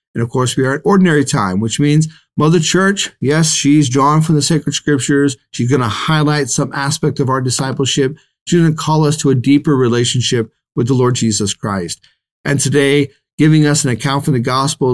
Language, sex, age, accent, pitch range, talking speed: English, male, 40-59, American, 115-145 Hz, 205 wpm